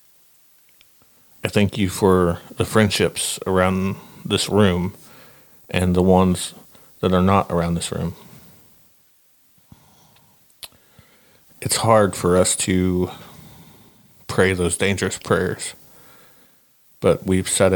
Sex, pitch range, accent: male, 90-100 Hz, American